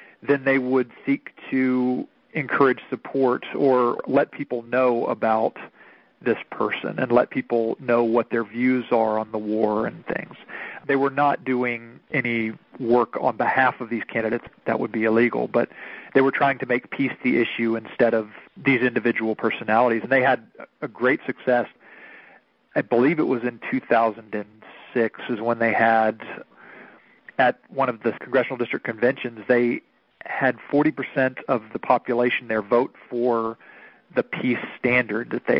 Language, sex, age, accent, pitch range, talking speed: English, male, 40-59, American, 115-135 Hz, 155 wpm